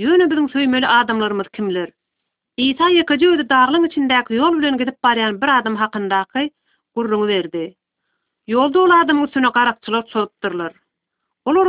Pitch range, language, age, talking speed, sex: 205-290 Hz, Arabic, 40-59, 130 wpm, female